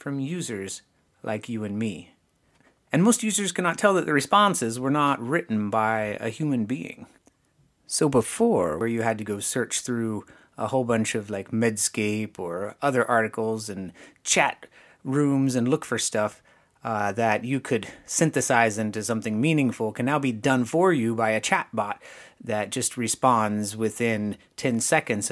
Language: English